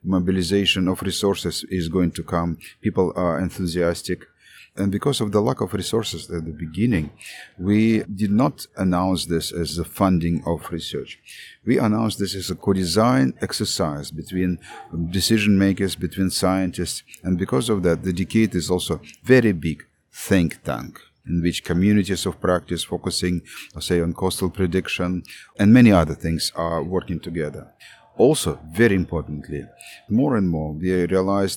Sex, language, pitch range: male, Portuguese, 85-95 Hz